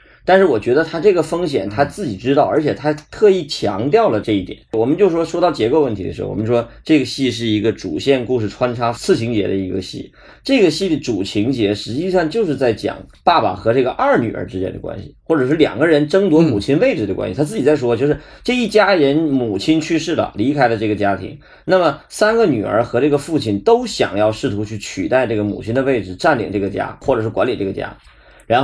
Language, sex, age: Chinese, male, 30-49